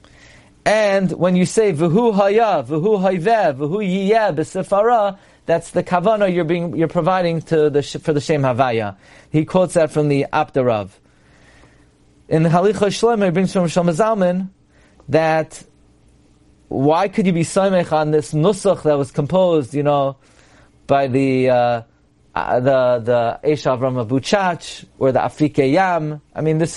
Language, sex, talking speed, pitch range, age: English, male, 140 wpm, 145-190 Hz, 40-59